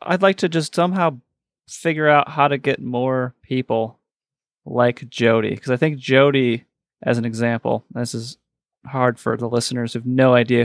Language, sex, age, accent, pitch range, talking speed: English, male, 30-49, American, 120-140 Hz, 175 wpm